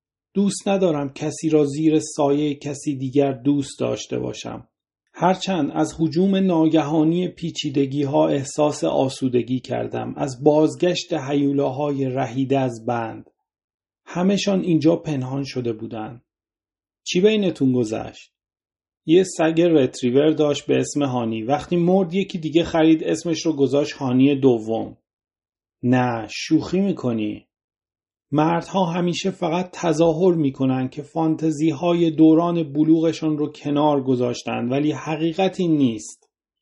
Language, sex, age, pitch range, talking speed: Persian, male, 40-59, 130-170 Hz, 120 wpm